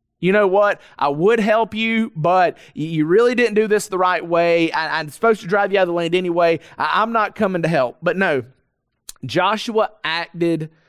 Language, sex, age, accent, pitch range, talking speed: English, male, 30-49, American, 145-205 Hz, 195 wpm